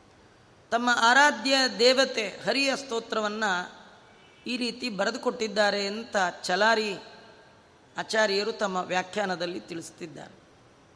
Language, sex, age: Kannada, female, 30-49